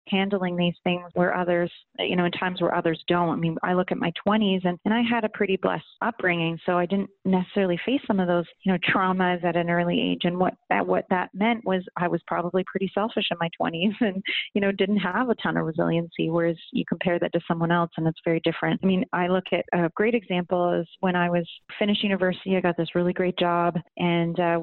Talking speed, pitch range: 240 wpm, 175-205 Hz